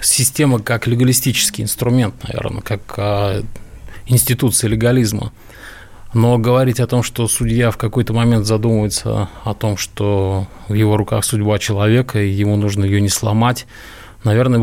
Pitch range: 105-120 Hz